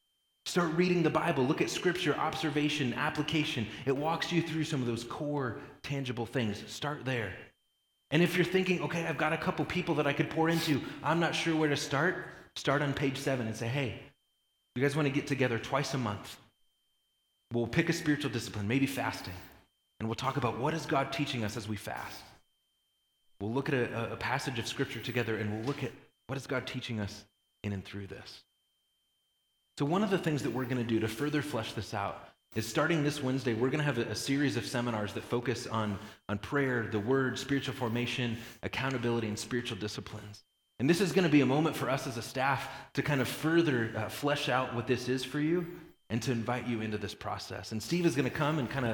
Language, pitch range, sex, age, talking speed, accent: English, 110-145 Hz, male, 30-49, 220 wpm, American